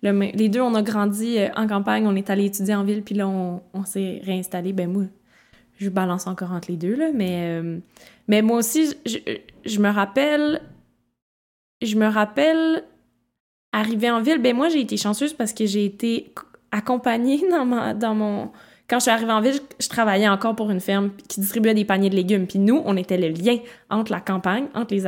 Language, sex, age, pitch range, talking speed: French, female, 20-39, 190-225 Hz, 215 wpm